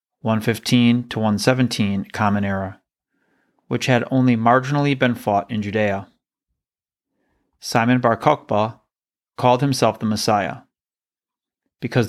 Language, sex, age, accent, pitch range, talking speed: English, male, 30-49, American, 105-125 Hz, 105 wpm